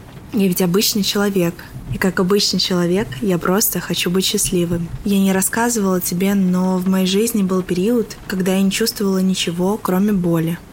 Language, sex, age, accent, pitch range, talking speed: Russian, female, 20-39, native, 175-200 Hz, 170 wpm